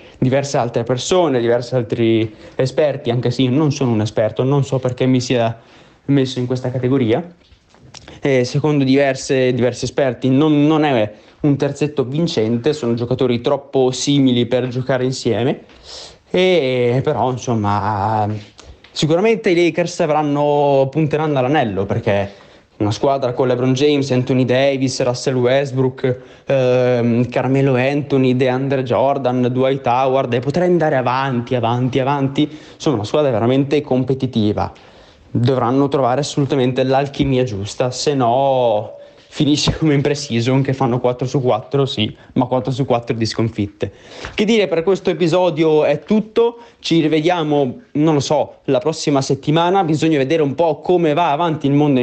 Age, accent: 20-39, native